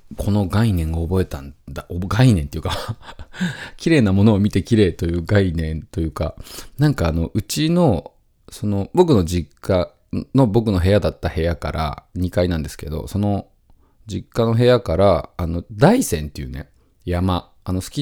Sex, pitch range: male, 85-140 Hz